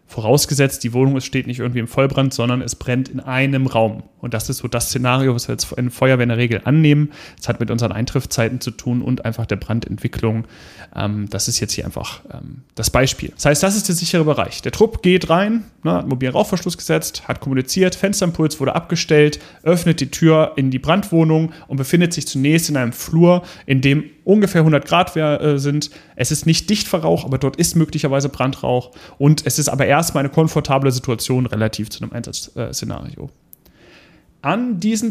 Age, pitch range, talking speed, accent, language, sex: 30-49, 125-170 Hz, 190 wpm, German, German, male